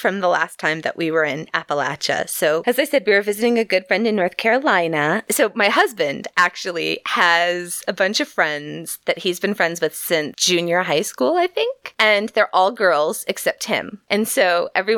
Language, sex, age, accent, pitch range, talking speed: English, female, 20-39, American, 160-205 Hz, 205 wpm